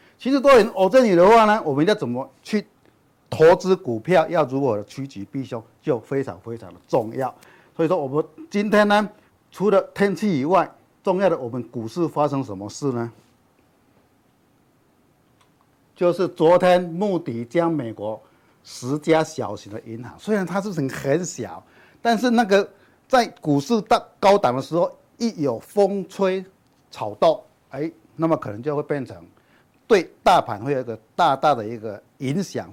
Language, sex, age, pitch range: Chinese, male, 50-69, 120-180 Hz